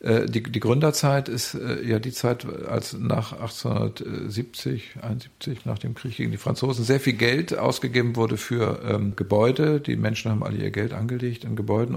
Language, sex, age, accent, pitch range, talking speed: German, male, 50-69, German, 110-130 Hz, 170 wpm